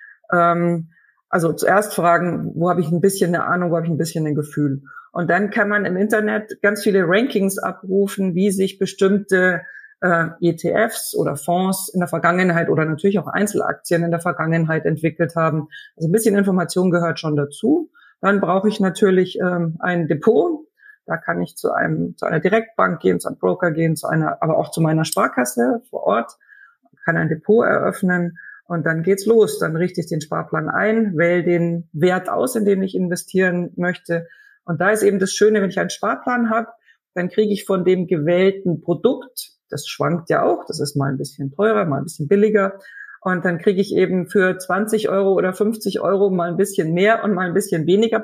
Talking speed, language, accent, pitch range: 195 wpm, German, German, 170-205 Hz